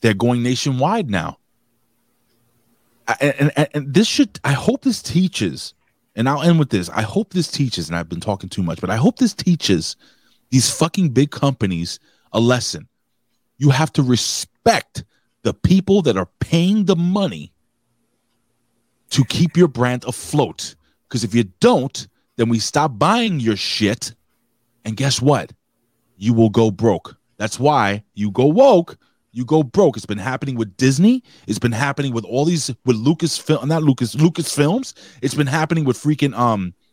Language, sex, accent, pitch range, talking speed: English, male, American, 110-150 Hz, 170 wpm